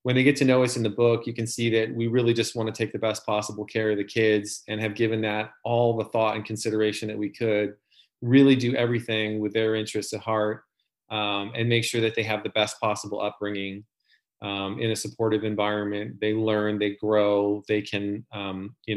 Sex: male